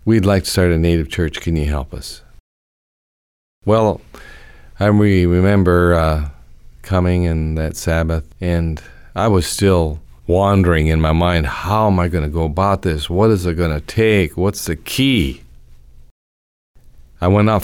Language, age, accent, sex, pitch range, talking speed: English, 50-69, American, male, 75-95 Hz, 165 wpm